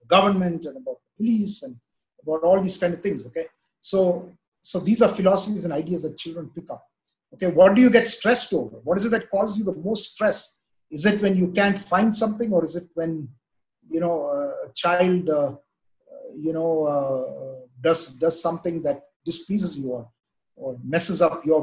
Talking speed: 190 wpm